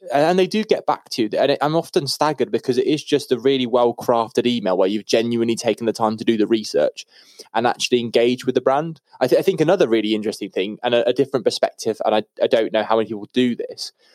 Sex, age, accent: male, 20-39, British